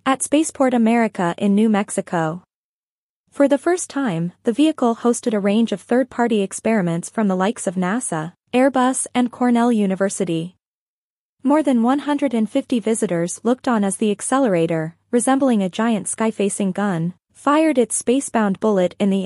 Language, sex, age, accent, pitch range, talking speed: English, female, 20-39, American, 190-250 Hz, 145 wpm